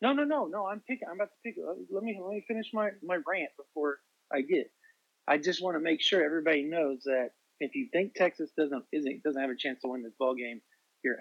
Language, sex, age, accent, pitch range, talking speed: English, male, 40-59, American, 125-185 Hz, 240 wpm